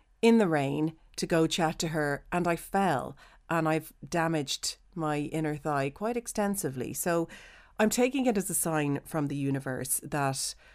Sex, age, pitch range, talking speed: female, 40-59, 145-180 Hz, 165 wpm